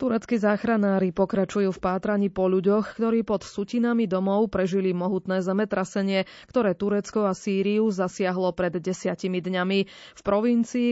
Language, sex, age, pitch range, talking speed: Slovak, female, 20-39, 185-215 Hz, 130 wpm